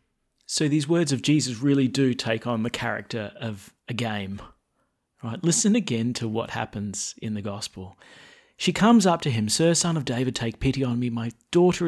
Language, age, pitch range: English, 30-49, 105-140 Hz